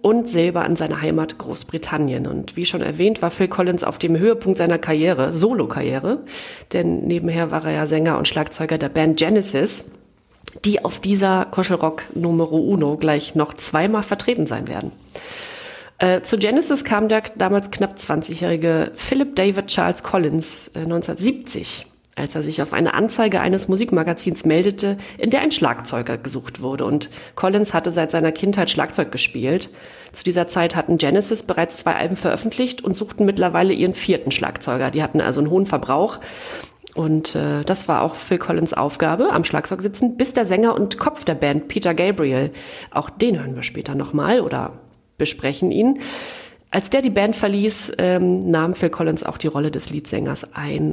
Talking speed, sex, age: 170 wpm, female, 40-59